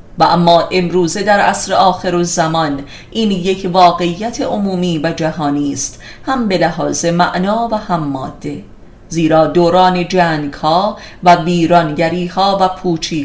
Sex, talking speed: female, 135 wpm